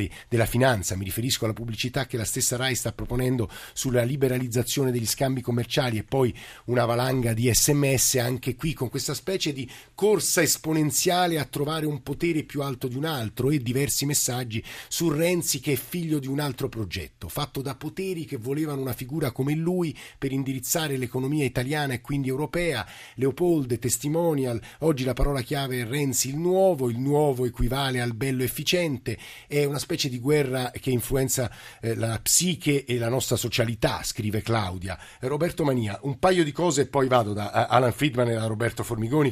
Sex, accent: male, native